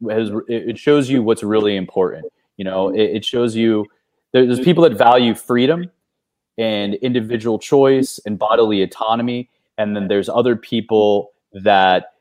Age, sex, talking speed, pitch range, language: 30-49, male, 145 wpm, 105-135 Hz, English